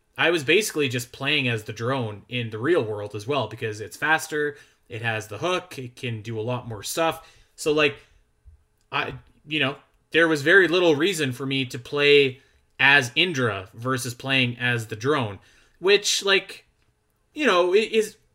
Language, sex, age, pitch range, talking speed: English, male, 30-49, 115-150 Hz, 175 wpm